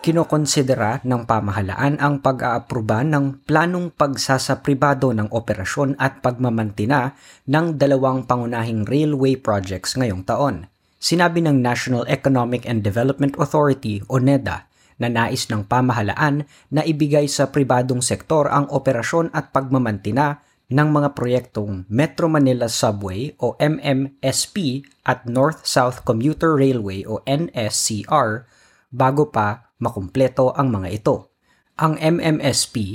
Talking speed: 115 wpm